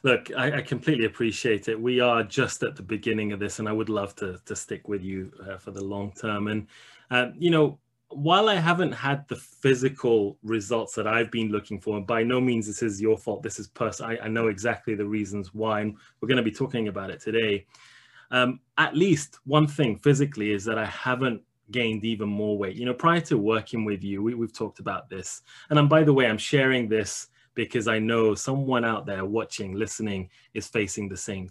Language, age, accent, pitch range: English, 20-39, British, 105-130 Hz